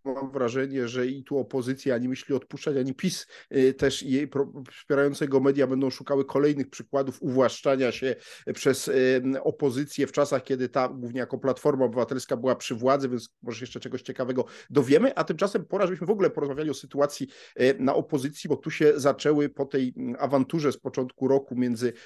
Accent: native